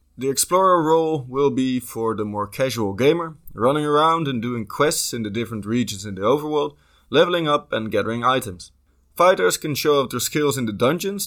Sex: male